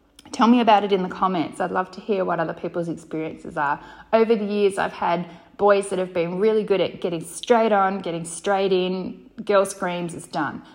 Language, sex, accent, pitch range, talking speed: English, female, Australian, 165-220 Hz, 210 wpm